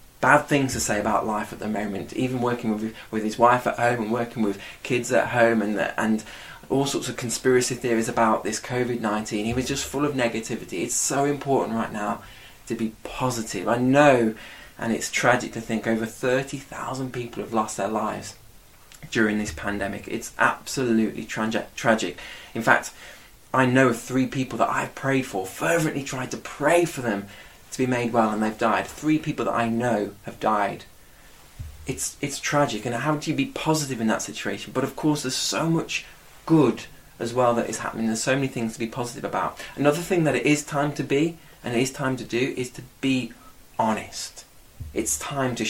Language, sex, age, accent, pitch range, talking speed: English, male, 20-39, British, 110-135 Hz, 200 wpm